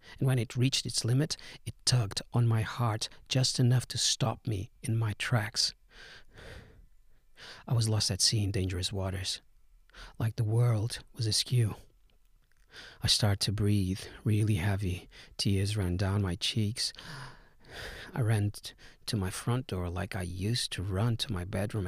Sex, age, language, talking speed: male, 40-59, English, 155 wpm